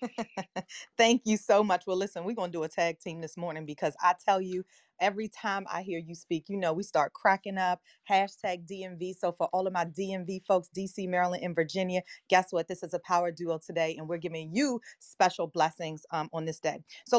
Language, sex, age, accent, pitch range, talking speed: English, female, 30-49, American, 175-220 Hz, 220 wpm